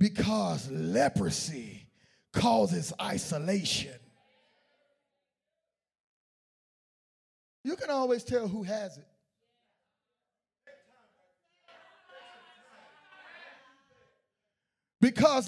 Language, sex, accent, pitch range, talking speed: English, male, American, 240-335 Hz, 45 wpm